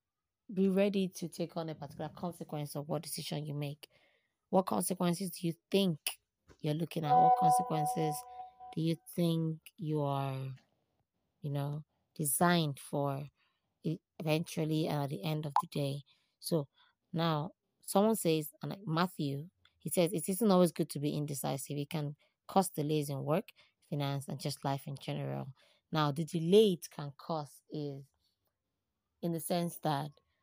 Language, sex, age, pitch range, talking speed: English, female, 20-39, 145-175 Hz, 150 wpm